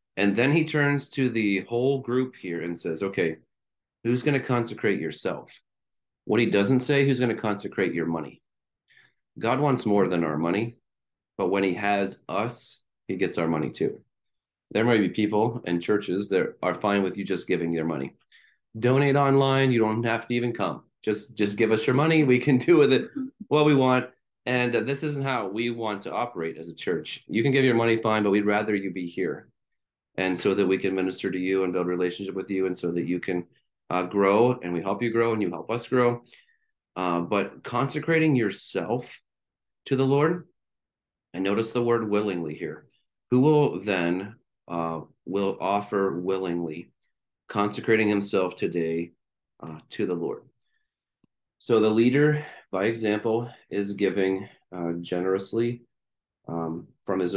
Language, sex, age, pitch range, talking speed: English, male, 30-49, 95-125 Hz, 180 wpm